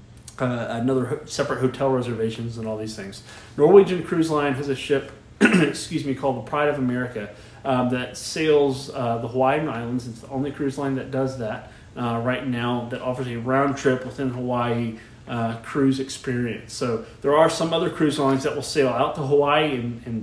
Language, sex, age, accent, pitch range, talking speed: English, male, 30-49, American, 120-140 Hz, 195 wpm